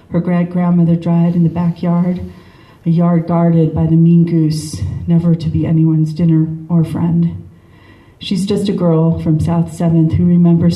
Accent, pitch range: American, 155-175 Hz